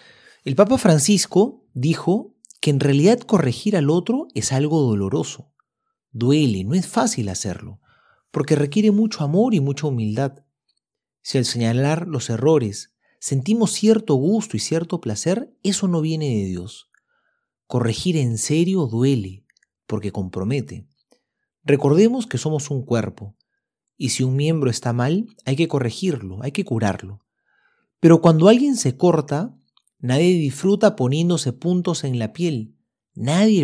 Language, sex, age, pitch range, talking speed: Spanish, male, 40-59, 110-170 Hz, 135 wpm